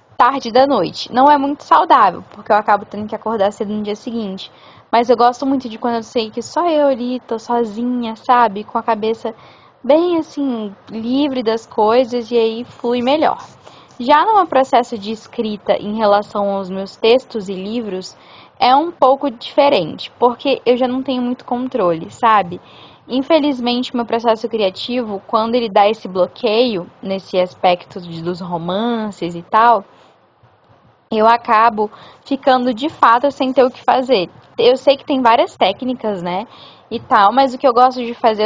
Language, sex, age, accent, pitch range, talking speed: Portuguese, female, 10-29, Brazilian, 215-260 Hz, 170 wpm